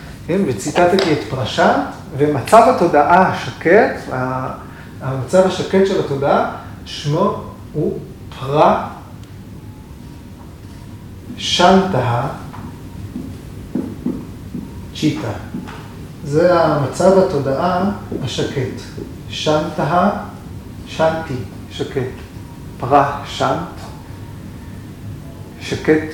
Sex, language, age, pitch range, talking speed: male, Hebrew, 40-59, 120-170 Hz, 55 wpm